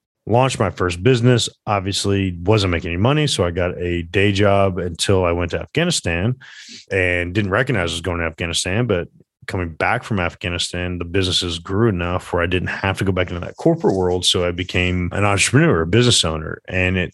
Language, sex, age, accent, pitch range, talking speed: English, male, 30-49, American, 90-105 Hz, 205 wpm